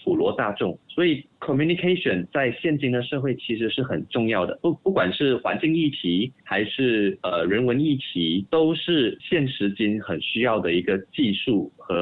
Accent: native